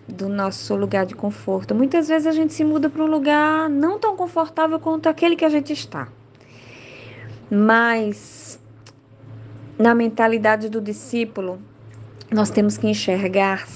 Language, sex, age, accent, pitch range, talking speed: Portuguese, female, 20-39, Brazilian, 175-235 Hz, 140 wpm